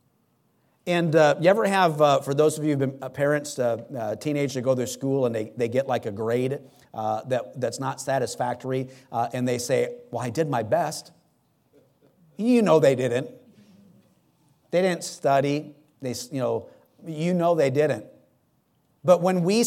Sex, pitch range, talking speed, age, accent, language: male, 130-175 Hz, 185 wpm, 50-69, American, English